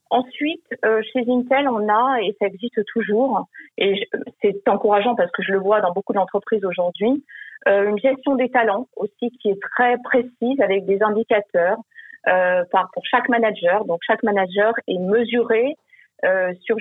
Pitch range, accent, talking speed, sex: 200-250 Hz, French, 150 wpm, female